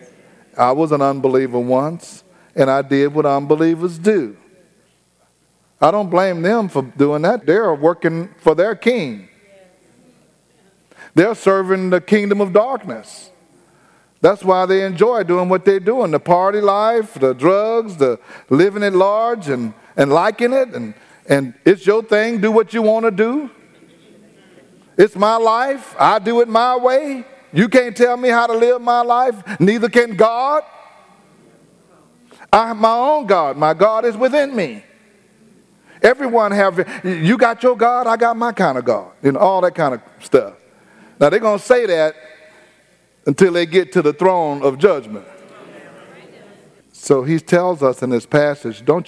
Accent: American